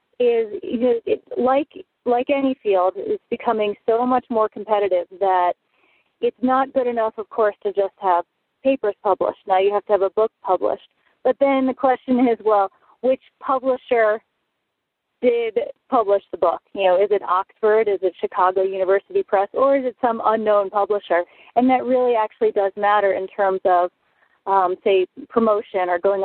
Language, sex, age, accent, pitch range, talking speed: English, female, 30-49, American, 195-260 Hz, 175 wpm